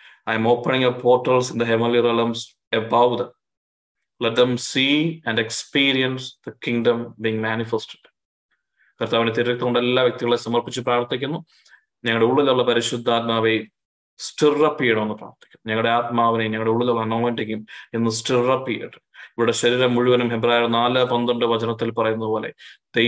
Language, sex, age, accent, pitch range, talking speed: Malayalam, male, 20-39, native, 115-120 Hz, 150 wpm